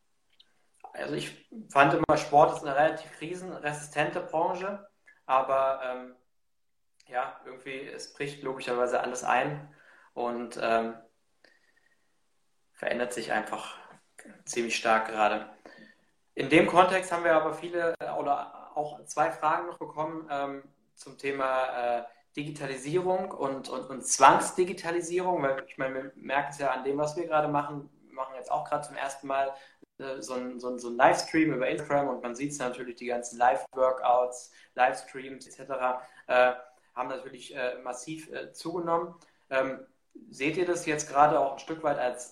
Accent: German